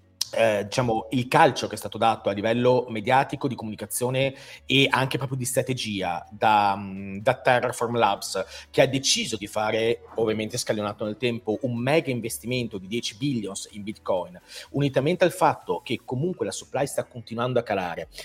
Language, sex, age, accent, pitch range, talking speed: Italian, male, 40-59, native, 110-140 Hz, 165 wpm